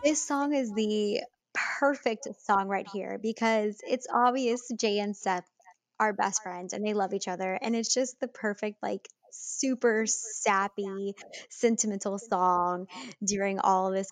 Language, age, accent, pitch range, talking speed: English, 10-29, American, 195-225 Hz, 155 wpm